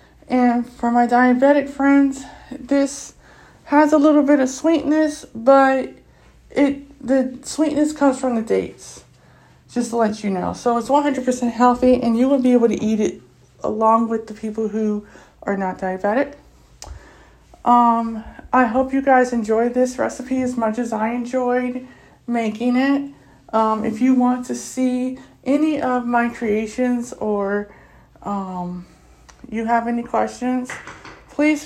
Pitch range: 220-255 Hz